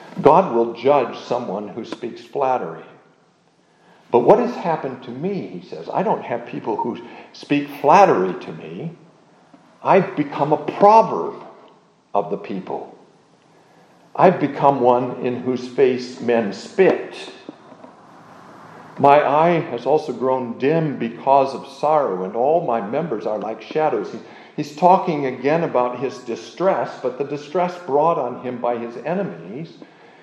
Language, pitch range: English, 130-175 Hz